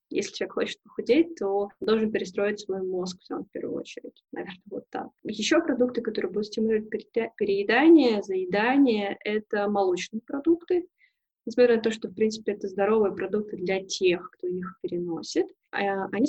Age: 20-39